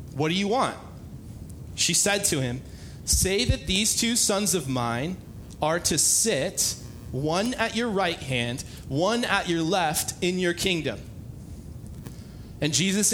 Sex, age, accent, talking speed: male, 30-49, American, 145 wpm